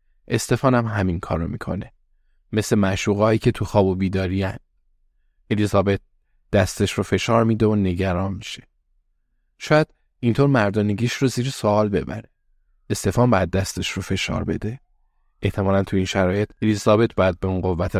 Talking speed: 140 wpm